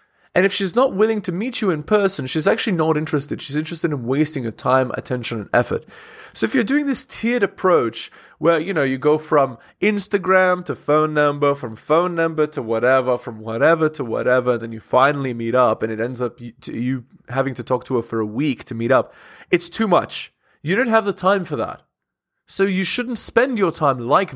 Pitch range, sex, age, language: 120-180 Hz, male, 20-39, English